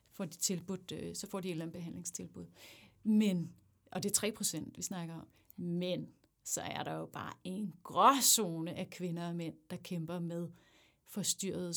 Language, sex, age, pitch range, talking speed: Danish, female, 30-49, 175-230 Hz, 180 wpm